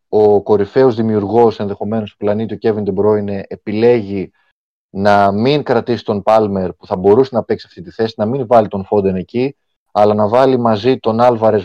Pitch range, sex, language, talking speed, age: 100-130 Hz, male, Greek, 180 wpm, 30-49